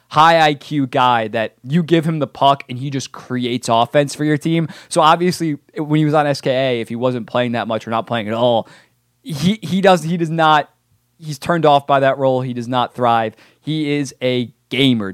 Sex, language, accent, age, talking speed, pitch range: male, English, American, 20-39, 220 wpm, 120-150 Hz